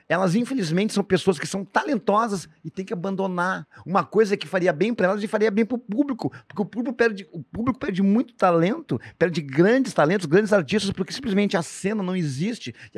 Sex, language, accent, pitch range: male, Portuguese, Brazilian, 155-205 Hz